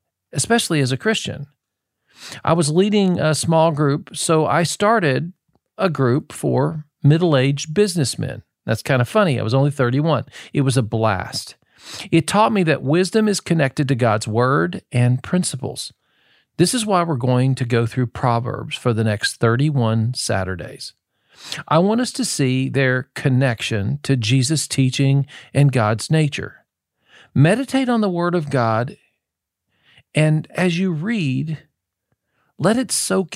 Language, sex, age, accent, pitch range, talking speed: English, male, 50-69, American, 125-170 Hz, 150 wpm